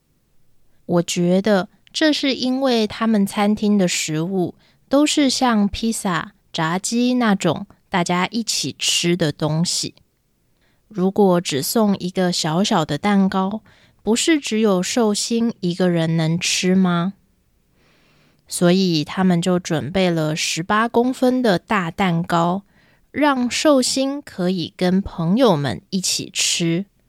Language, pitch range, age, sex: Japanese, 170-220 Hz, 20-39, female